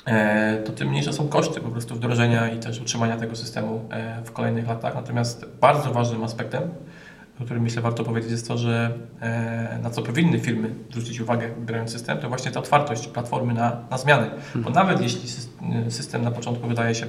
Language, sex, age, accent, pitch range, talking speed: Polish, male, 20-39, native, 115-130 Hz, 185 wpm